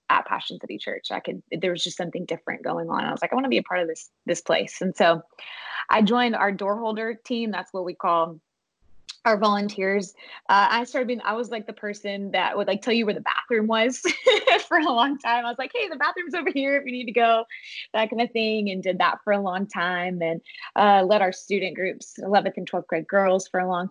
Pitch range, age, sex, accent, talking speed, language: 180-225 Hz, 20-39, female, American, 250 wpm, English